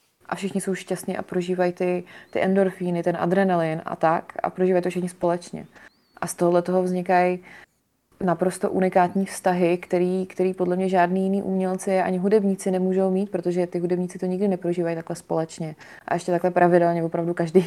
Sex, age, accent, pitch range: female, 20-39, native, 175-195 Hz